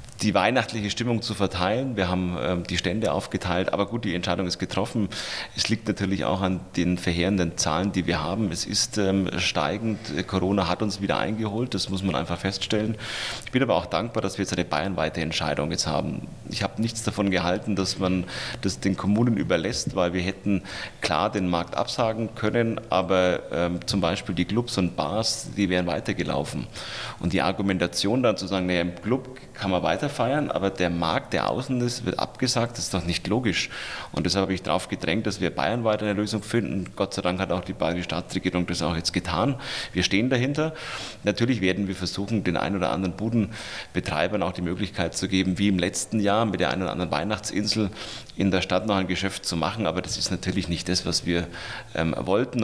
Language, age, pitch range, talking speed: German, 30-49, 90-110 Hz, 205 wpm